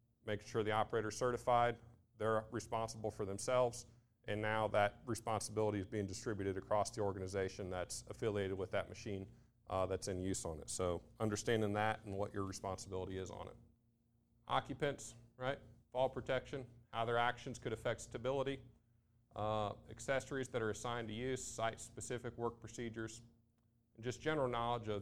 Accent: American